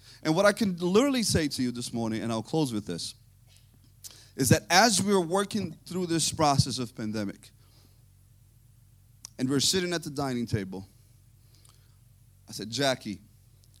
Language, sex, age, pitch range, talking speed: English, male, 30-49, 110-150 Hz, 150 wpm